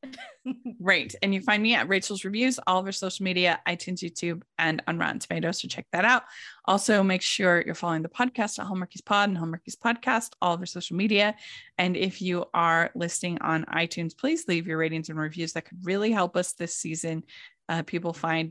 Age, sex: 20-39, female